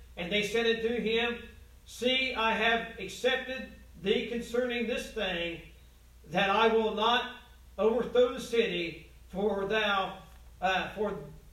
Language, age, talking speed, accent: English, 50-69, 125 wpm, American